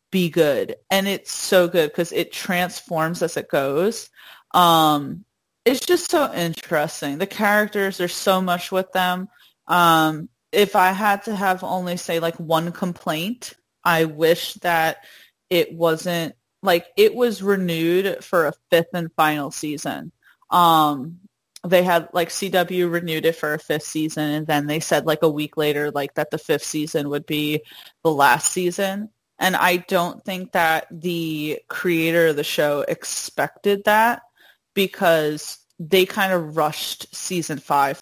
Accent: American